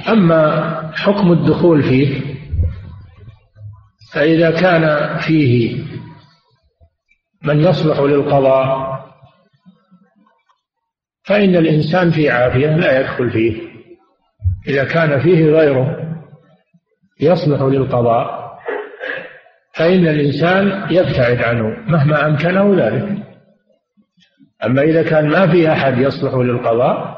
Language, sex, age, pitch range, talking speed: Arabic, male, 50-69, 130-165 Hz, 85 wpm